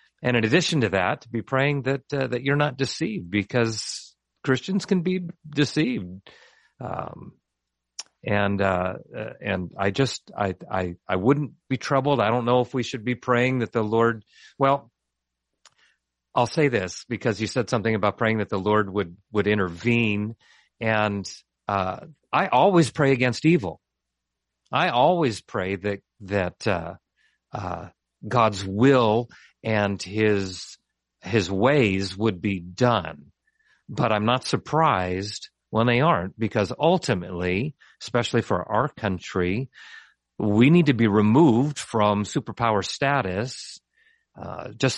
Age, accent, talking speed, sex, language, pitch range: 50-69, American, 140 wpm, male, English, 95-125 Hz